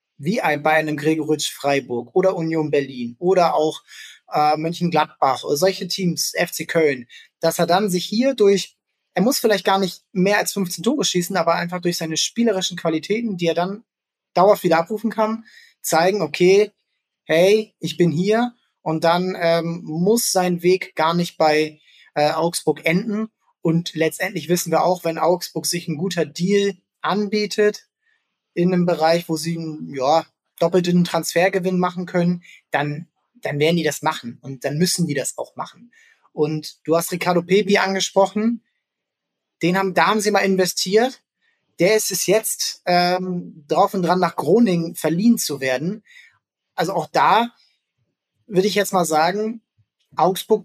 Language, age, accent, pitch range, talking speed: German, 20-39, German, 160-200 Hz, 160 wpm